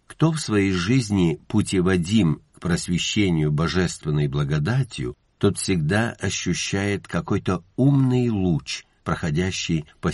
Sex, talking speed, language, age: male, 100 wpm, Russian, 60-79